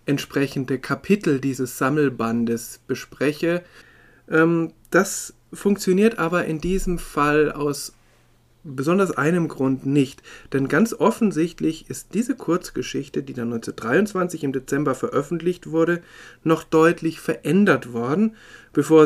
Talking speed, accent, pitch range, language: 105 wpm, German, 135-175 Hz, German